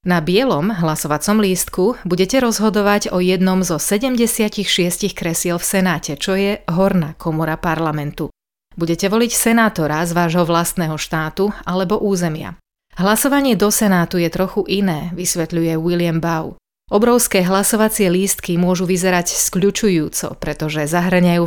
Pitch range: 165-205 Hz